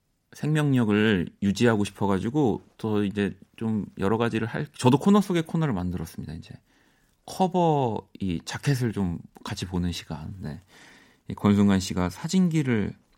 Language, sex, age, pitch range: Korean, male, 30-49, 90-125 Hz